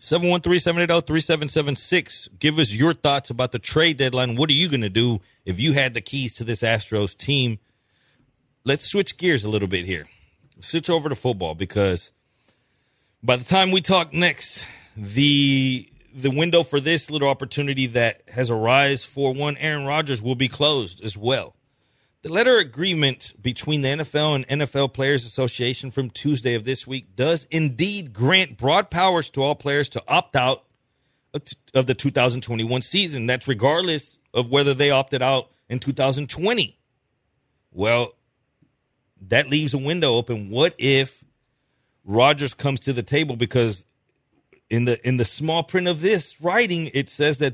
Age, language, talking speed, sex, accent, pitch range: 40-59, English, 160 wpm, male, American, 125-150 Hz